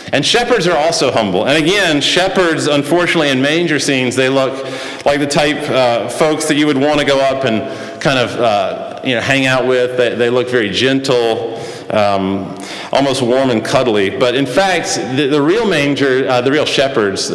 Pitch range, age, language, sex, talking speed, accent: 120-145 Hz, 40-59, English, male, 195 wpm, American